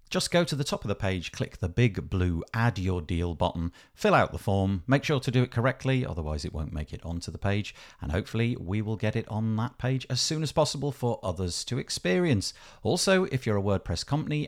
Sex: male